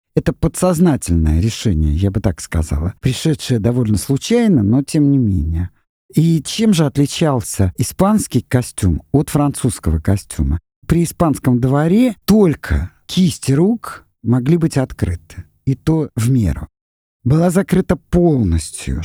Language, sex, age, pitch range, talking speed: Russian, male, 50-69, 95-160 Hz, 125 wpm